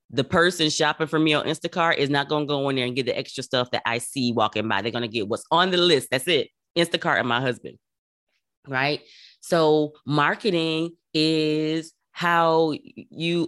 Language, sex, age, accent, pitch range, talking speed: English, female, 30-49, American, 140-175 Hz, 195 wpm